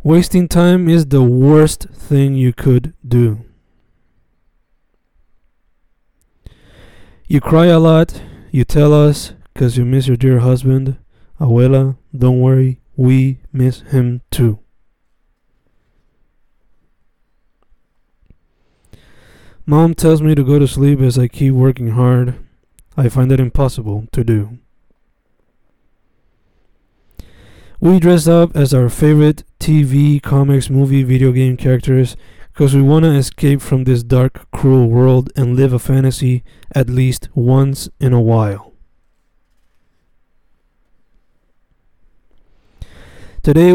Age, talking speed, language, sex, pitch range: 20-39, 110 wpm, Spanish, male, 120-145 Hz